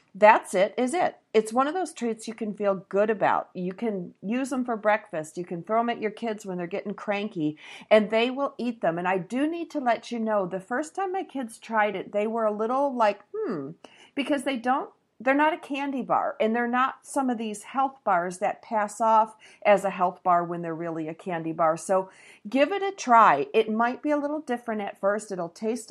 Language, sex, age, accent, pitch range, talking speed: English, female, 50-69, American, 190-260 Hz, 235 wpm